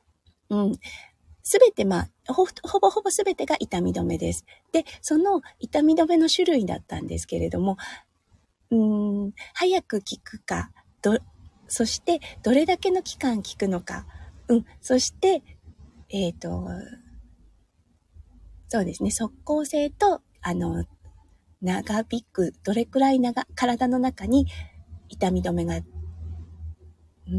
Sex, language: female, Japanese